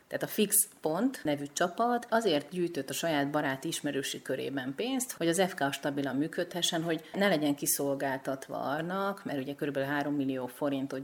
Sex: female